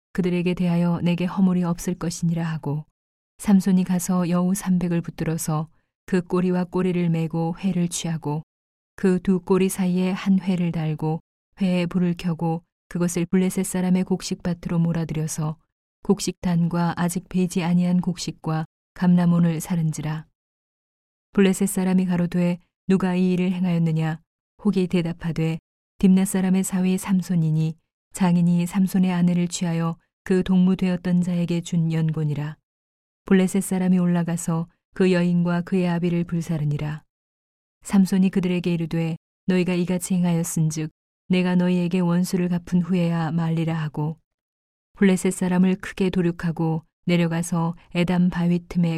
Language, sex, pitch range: Korean, female, 165-185 Hz